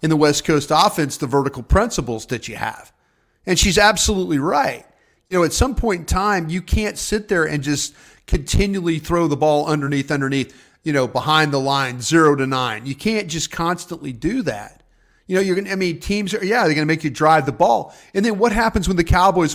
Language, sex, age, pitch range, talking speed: English, male, 40-59, 135-185 Hz, 220 wpm